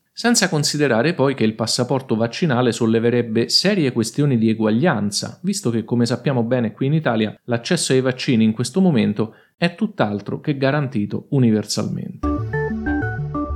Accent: native